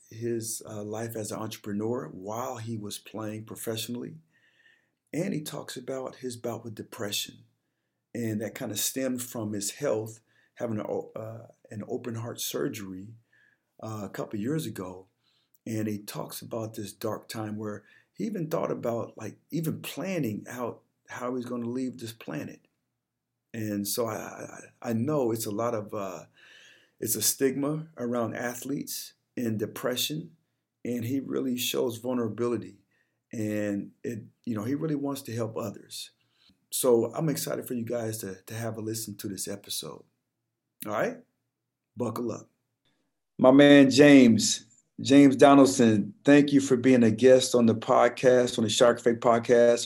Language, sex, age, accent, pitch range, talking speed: English, male, 40-59, American, 110-125 Hz, 160 wpm